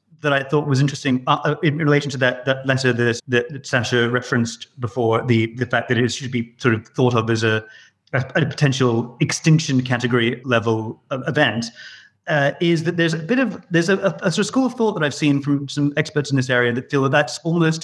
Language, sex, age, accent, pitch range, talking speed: English, male, 30-49, British, 120-145 Hz, 225 wpm